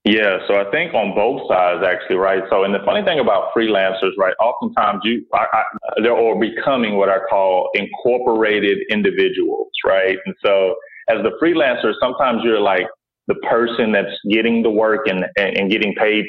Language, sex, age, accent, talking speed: English, male, 30-49, American, 170 wpm